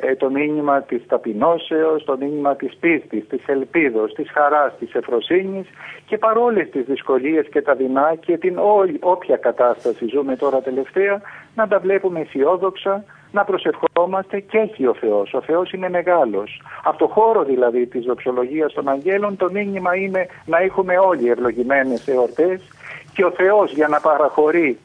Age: 50-69